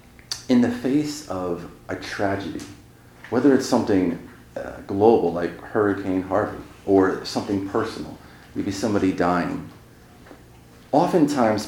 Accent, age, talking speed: American, 40-59, 105 wpm